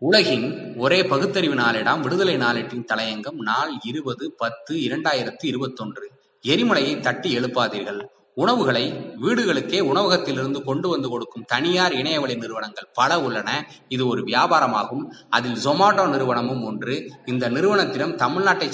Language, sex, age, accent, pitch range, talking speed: Tamil, male, 20-39, native, 125-185 Hz, 115 wpm